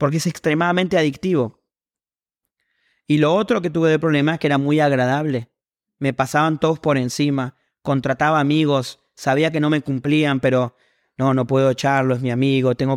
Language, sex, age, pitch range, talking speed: English, male, 30-49, 130-160 Hz, 170 wpm